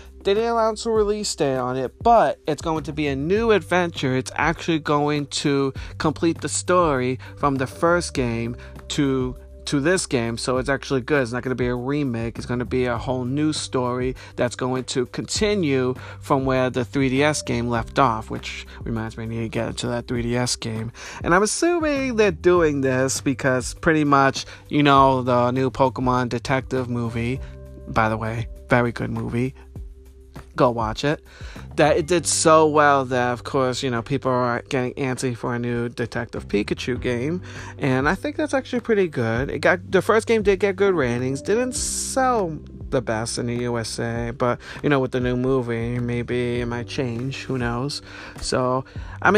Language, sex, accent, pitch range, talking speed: English, male, American, 120-145 Hz, 190 wpm